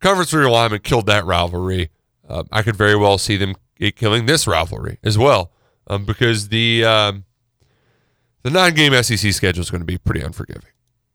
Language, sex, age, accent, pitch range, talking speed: English, male, 30-49, American, 105-135 Hz, 165 wpm